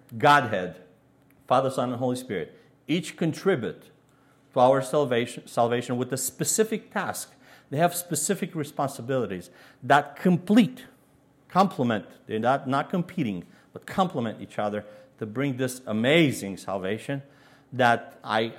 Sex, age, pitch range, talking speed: male, 50-69, 120-150 Hz, 125 wpm